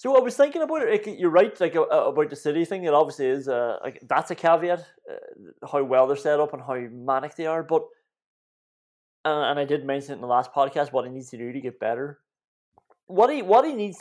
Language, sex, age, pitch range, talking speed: English, male, 20-39, 135-185 Hz, 235 wpm